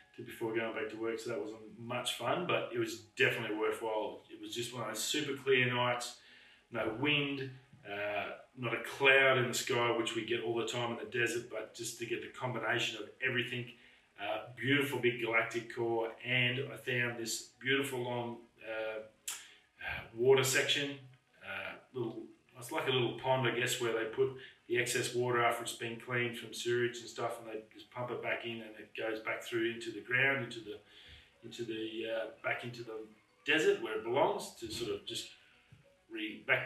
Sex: male